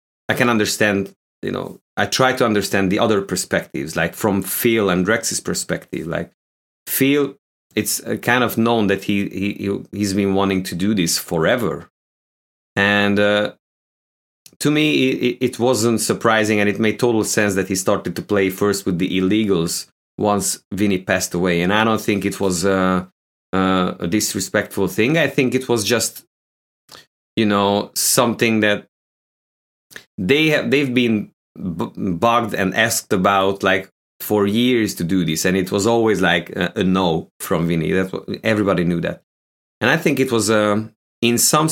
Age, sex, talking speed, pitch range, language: 30-49, male, 165 wpm, 95-115 Hz, English